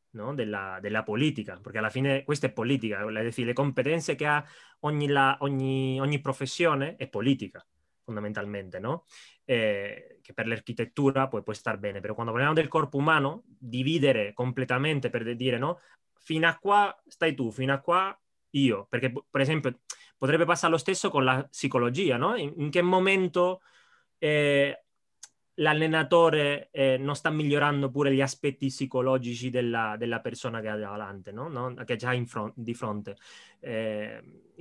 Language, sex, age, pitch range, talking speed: Italian, male, 20-39, 120-145 Hz, 160 wpm